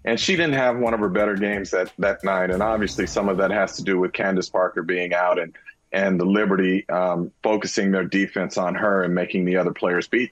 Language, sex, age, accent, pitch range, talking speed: English, male, 40-59, American, 95-110 Hz, 240 wpm